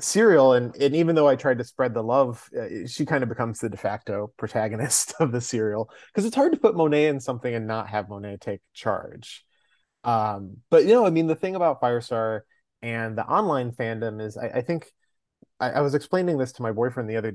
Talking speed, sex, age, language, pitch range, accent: 220 wpm, male, 30-49, English, 115-140 Hz, American